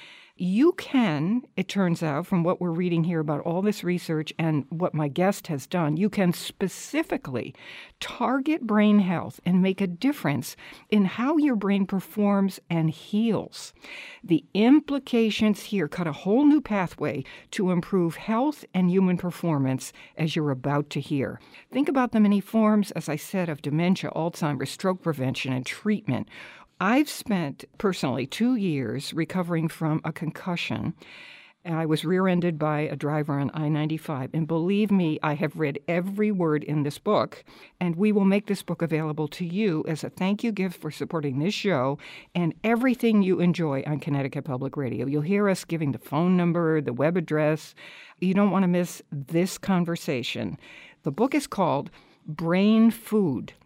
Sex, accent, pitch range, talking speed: female, American, 155-205 Hz, 165 wpm